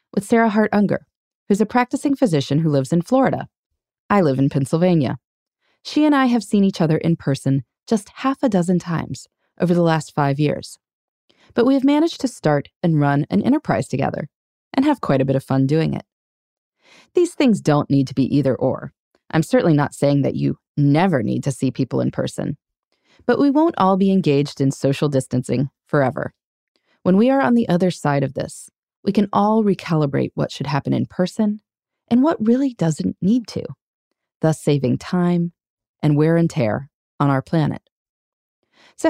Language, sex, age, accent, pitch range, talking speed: English, female, 20-39, American, 140-220 Hz, 185 wpm